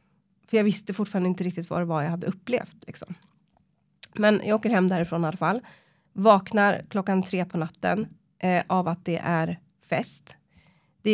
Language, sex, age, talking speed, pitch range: Swedish, female, 30-49, 170 wpm, 170-200 Hz